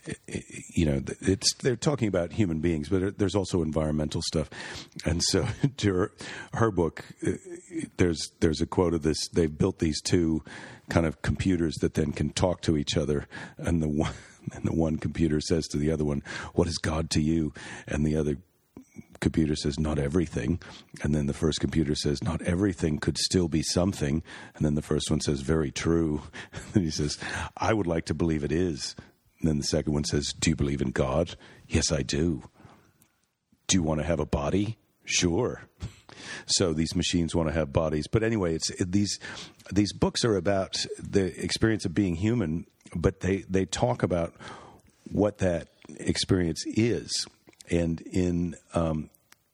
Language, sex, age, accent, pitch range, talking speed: English, male, 40-59, American, 75-95 Hz, 180 wpm